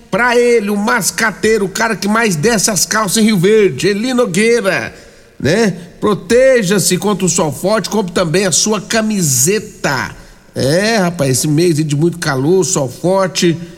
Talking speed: 155 wpm